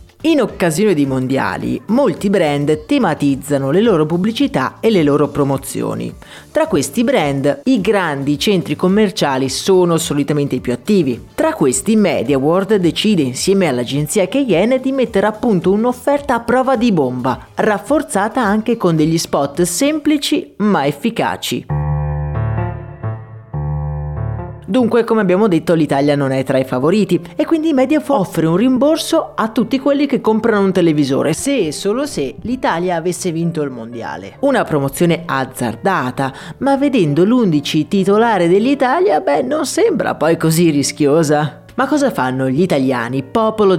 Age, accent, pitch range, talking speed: 30-49, native, 140-220 Hz, 140 wpm